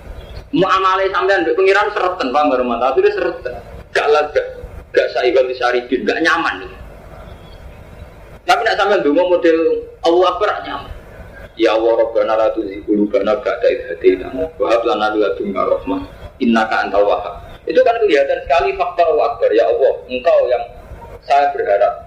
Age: 30-49